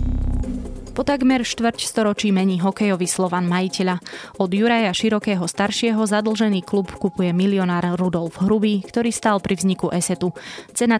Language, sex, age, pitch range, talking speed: Slovak, female, 20-39, 170-205 Hz, 130 wpm